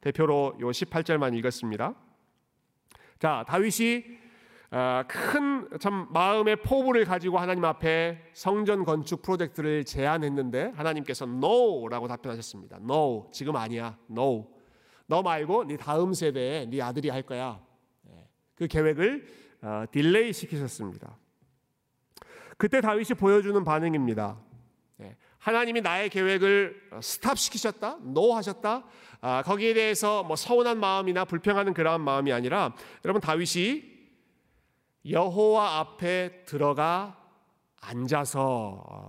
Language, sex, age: Korean, male, 40-59